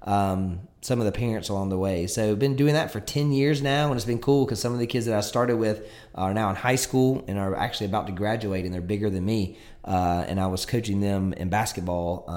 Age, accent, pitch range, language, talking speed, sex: 20-39, American, 95-125 Hz, English, 265 wpm, male